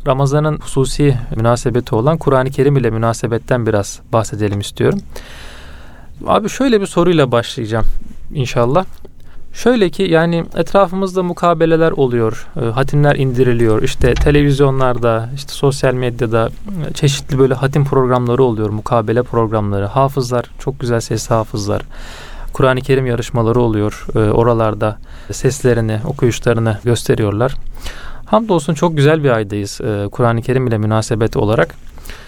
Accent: native